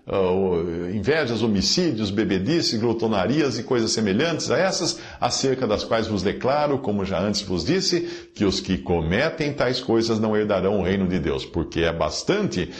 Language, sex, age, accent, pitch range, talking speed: Portuguese, male, 50-69, Brazilian, 95-155 Hz, 160 wpm